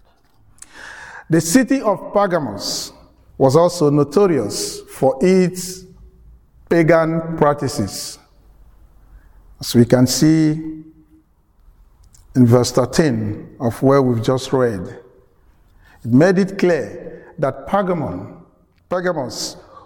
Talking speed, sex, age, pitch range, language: 90 wpm, male, 50-69, 110-155 Hz, English